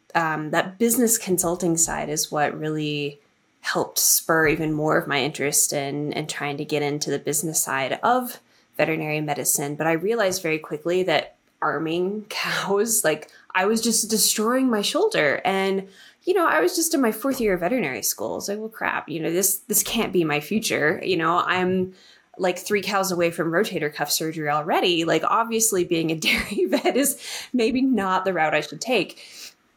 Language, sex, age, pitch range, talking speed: English, female, 20-39, 155-210 Hz, 190 wpm